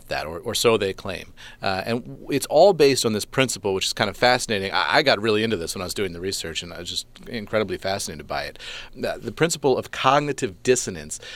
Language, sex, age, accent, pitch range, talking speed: English, male, 40-59, American, 105-130 Hz, 240 wpm